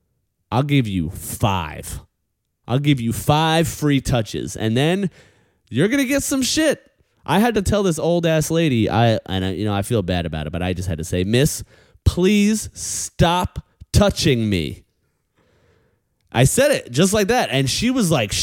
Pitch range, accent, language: 95-150 Hz, American, English